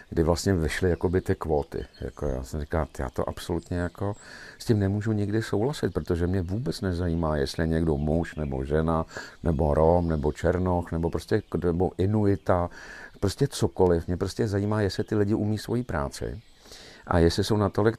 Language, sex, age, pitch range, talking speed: Czech, male, 50-69, 85-105 Hz, 170 wpm